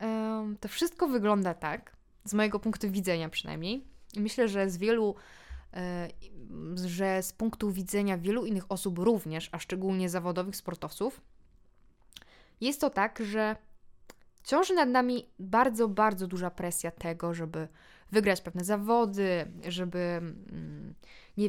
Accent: native